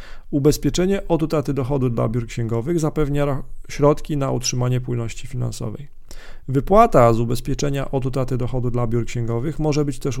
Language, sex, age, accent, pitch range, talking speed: Polish, male, 40-59, native, 120-145 Hz, 145 wpm